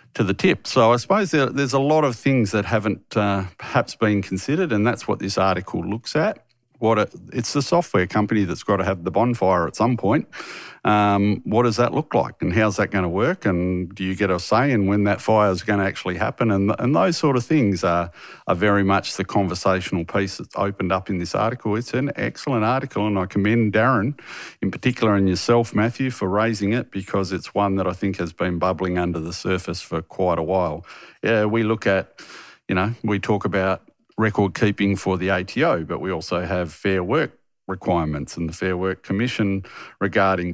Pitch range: 95-115 Hz